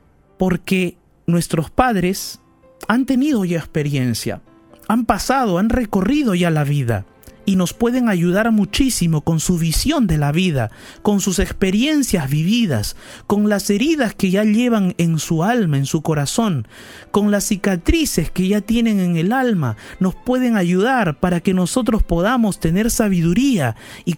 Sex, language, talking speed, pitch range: male, Spanish, 150 wpm, 145-205 Hz